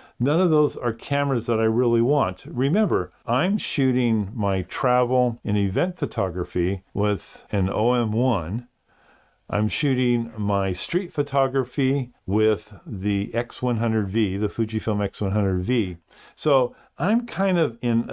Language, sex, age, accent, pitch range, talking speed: English, male, 50-69, American, 100-130 Hz, 120 wpm